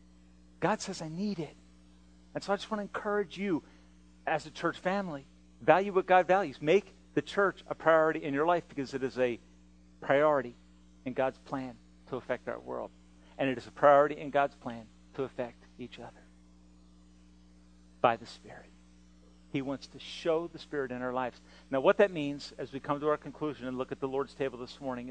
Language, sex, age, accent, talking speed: English, male, 40-59, American, 200 wpm